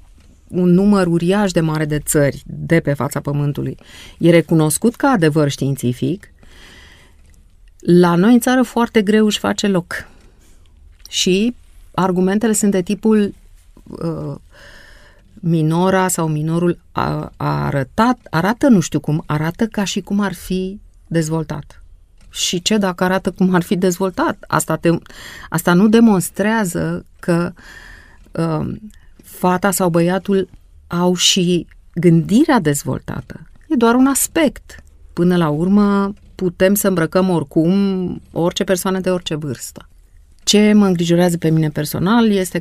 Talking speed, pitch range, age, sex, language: 125 wpm, 140-190 Hz, 30-49, female, Romanian